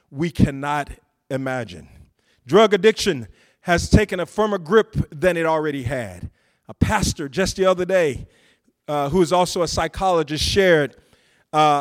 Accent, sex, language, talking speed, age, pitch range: American, male, English, 140 wpm, 40-59, 160-220 Hz